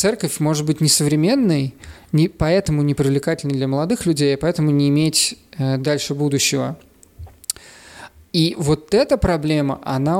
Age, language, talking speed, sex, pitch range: 20-39, Russian, 120 wpm, male, 140-160 Hz